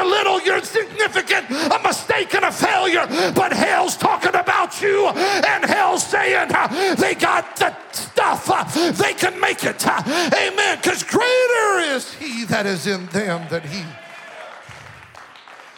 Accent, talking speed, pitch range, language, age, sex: American, 135 wpm, 165-210 Hz, English, 50-69, male